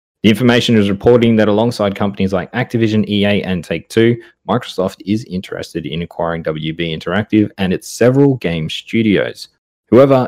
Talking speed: 145 wpm